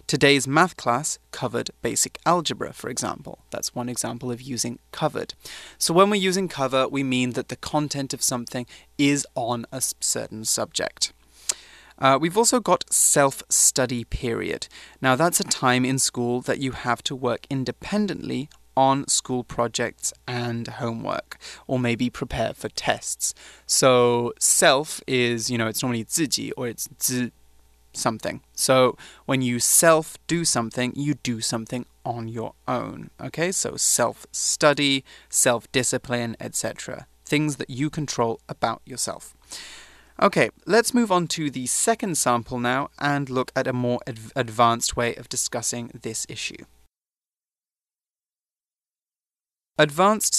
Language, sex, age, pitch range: Chinese, male, 20-39, 120-145 Hz